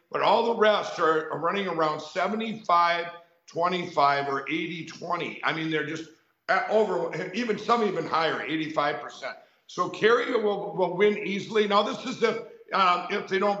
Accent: American